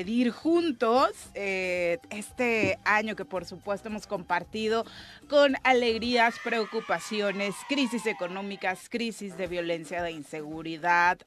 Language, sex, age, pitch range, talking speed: Spanish, female, 30-49, 175-215 Hz, 100 wpm